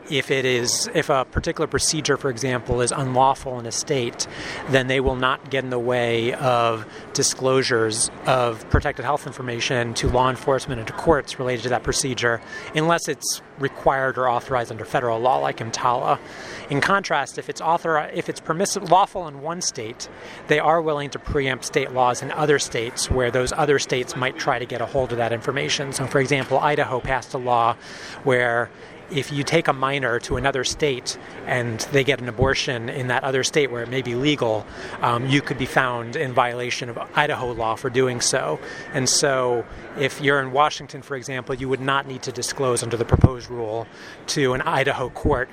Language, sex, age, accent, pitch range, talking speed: English, male, 30-49, American, 120-140 Hz, 195 wpm